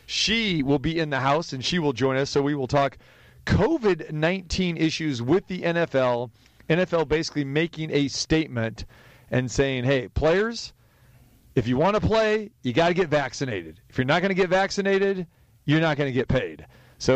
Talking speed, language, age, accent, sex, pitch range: 185 wpm, English, 40-59, American, male, 125-160 Hz